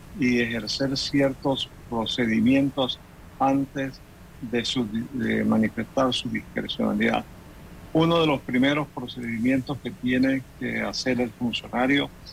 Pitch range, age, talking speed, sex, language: 120-145 Hz, 50-69, 100 wpm, male, Spanish